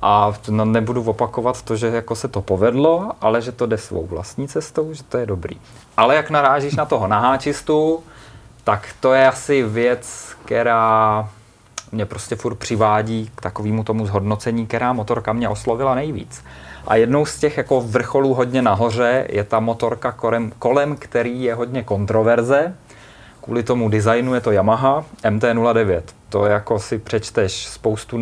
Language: Czech